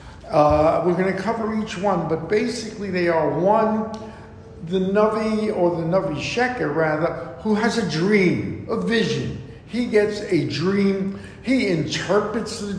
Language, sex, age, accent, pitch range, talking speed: English, male, 50-69, American, 155-205 Hz, 150 wpm